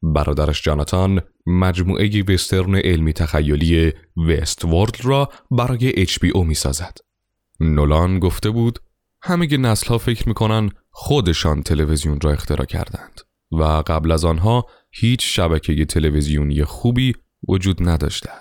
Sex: male